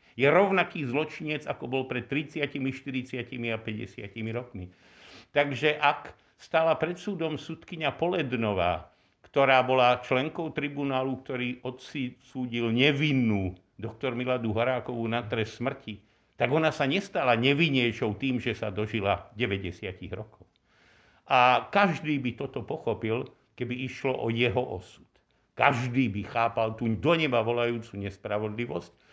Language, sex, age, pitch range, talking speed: Slovak, male, 60-79, 115-145 Hz, 125 wpm